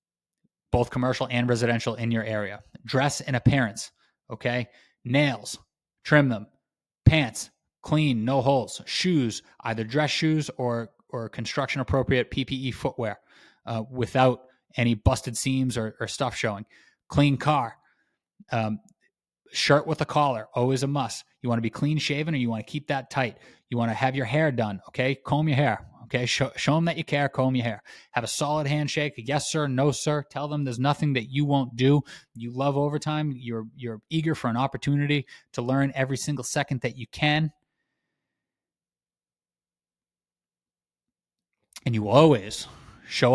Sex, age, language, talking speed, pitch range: male, 20-39, English, 165 wpm, 115-145 Hz